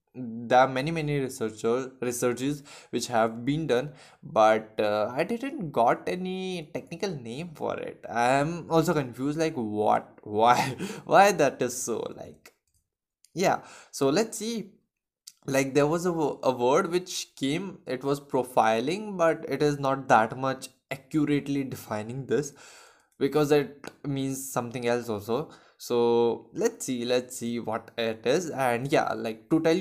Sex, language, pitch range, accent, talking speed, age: male, Hindi, 120-155 Hz, native, 150 wpm, 20-39